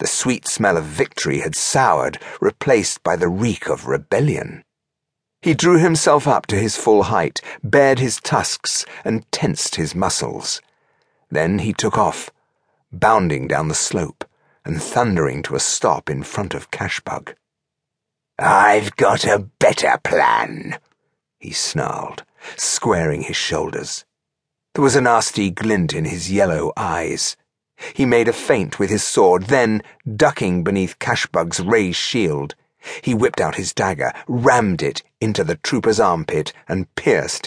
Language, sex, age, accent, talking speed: English, male, 50-69, British, 145 wpm